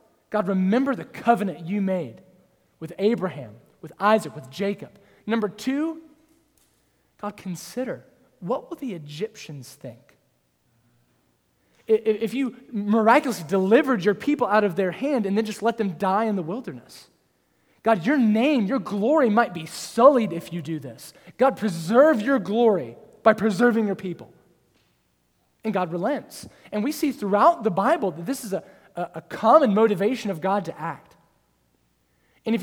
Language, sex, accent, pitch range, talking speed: English, male, American, 170-230 Hz, 150 wpm